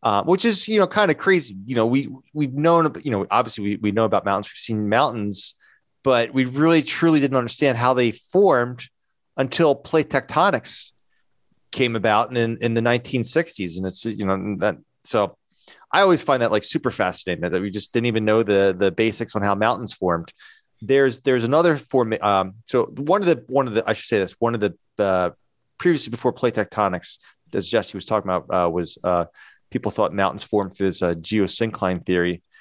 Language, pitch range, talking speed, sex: English, 100-135 Hz, 200 wpm, male